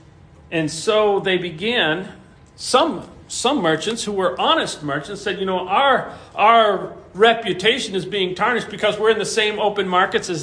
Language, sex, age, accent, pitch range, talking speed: English, male, 40-59, American, 185-240 Hz, 160 wpm